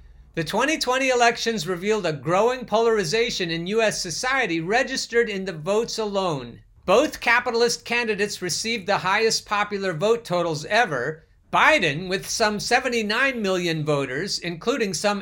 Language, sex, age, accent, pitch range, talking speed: English, male, 50-69, American, 155-215 Hz, 130 wpm